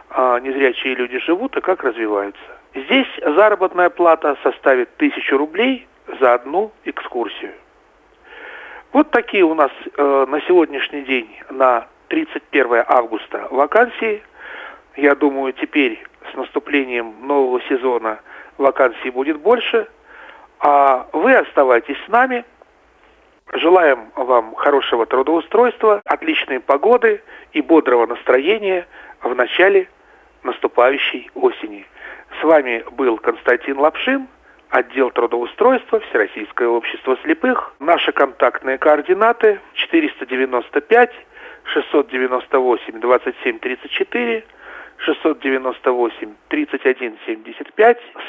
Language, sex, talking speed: Russian, male, 85 wpm